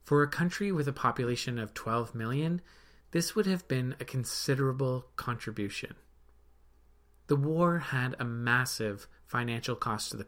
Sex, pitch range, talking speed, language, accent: male, 110-140 Hz, 145 wpm, English, American